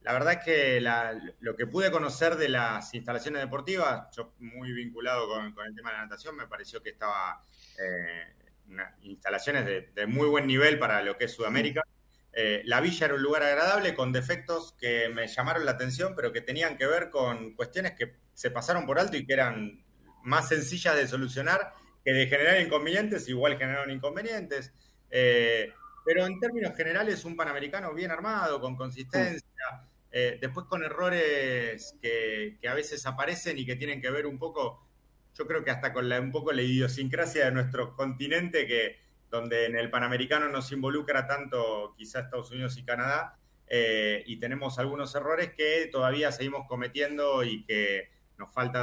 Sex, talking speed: male, 175 wpm